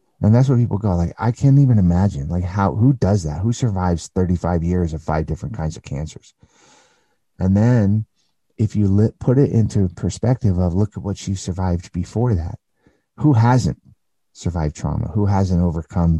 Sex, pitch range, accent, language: male, 85-105 Hz, American, English